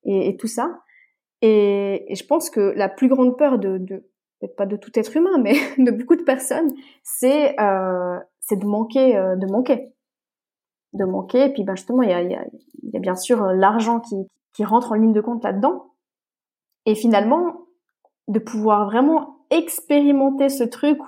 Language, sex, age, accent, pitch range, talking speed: French, female, 20-39, French, 200-265 Hz, 195 wpm